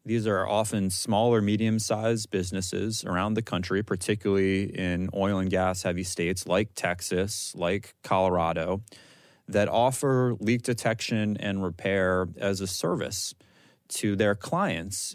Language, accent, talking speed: English, American, 125 wpm